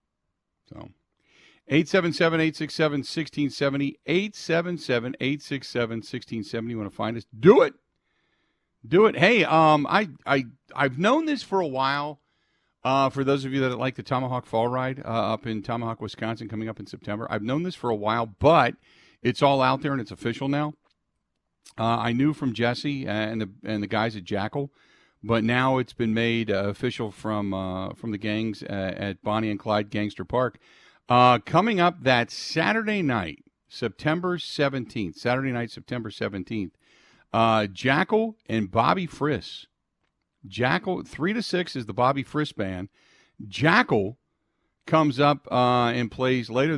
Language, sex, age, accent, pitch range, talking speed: English, male, 50-69, American, 110-145 Hz, 170 wpm